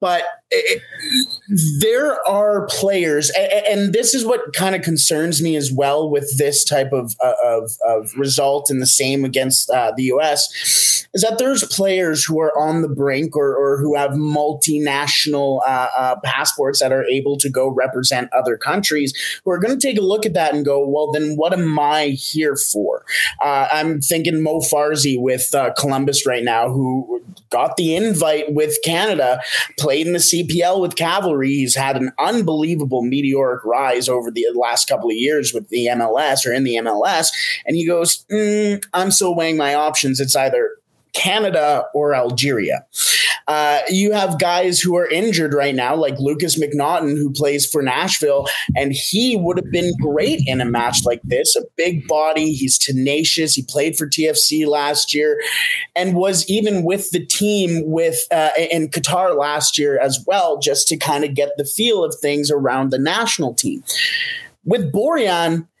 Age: 20-39